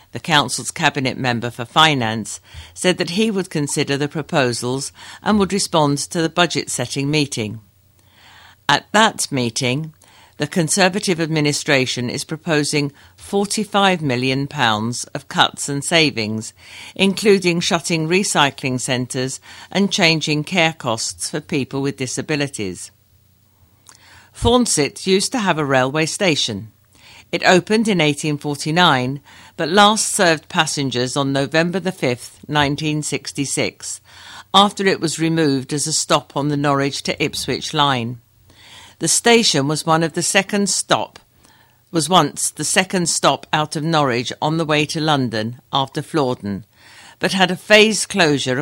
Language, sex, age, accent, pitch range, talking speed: English, female, 50-69, British, 125-165 Hz, 130 wpm